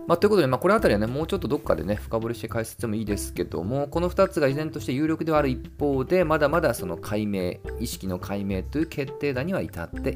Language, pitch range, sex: Japanese, 95-140 Hz, male